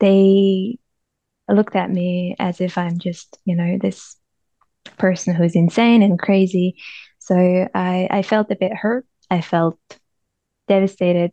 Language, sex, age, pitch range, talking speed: English, female, 10-29, 185-205 Hz, 145 wpm